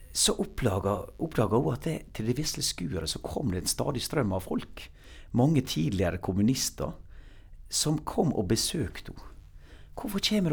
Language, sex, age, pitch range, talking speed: English, male, 60-79, 80-105 Hz, 160 wpm